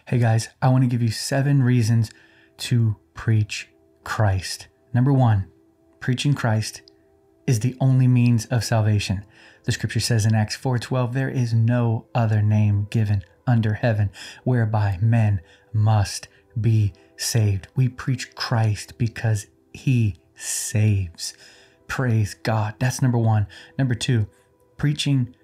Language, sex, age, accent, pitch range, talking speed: English, male, 20-39, American, 110-125 Hz, 130 wpm